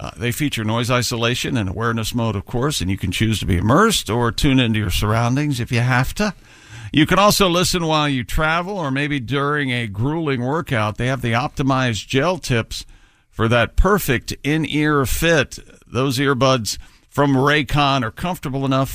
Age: 50-69